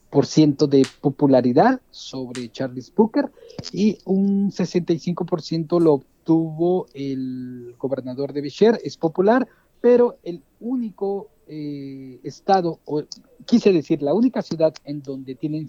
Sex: male